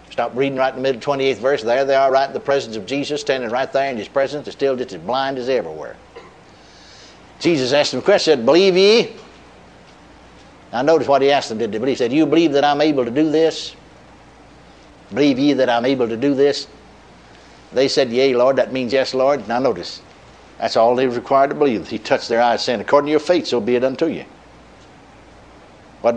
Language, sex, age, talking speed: English, male, 60-79, 225 wpm